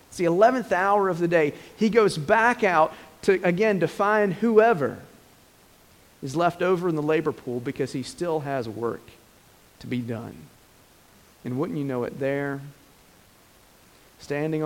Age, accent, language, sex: 40-59, American, English, male